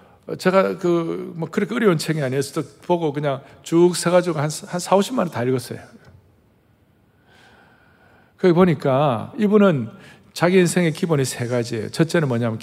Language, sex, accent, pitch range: Korean, male, native, 135-205 Hz